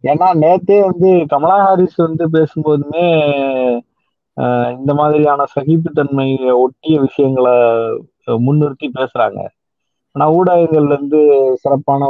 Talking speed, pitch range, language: 90 wpm, 130-165 Hz, Tamil